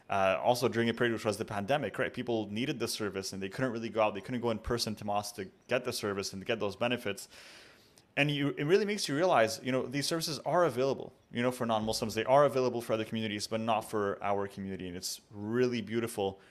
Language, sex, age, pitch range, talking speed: English, male, 20-39, 105-130 Hz, 245 wpm